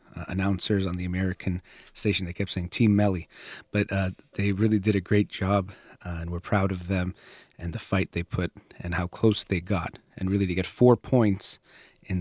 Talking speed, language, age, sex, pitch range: 205 wpm, English, 30-49, male, 90-110 Hz